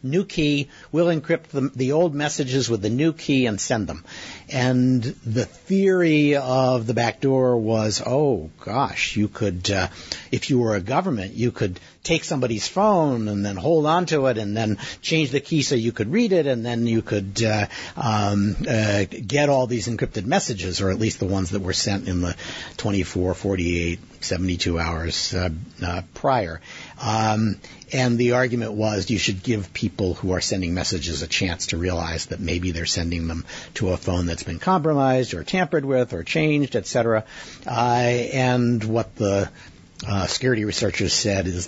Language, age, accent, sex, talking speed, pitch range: English, 60-79, American, male, 180 wpm, 100-130 Hz